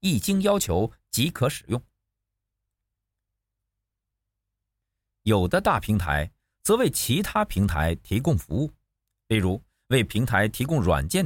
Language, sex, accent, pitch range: Chinese, male, native, 95-130 Hz